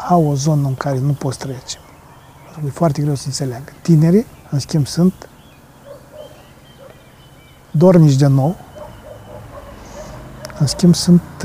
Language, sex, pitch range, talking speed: Romanian, male, 140-165 Hz, 120 wpm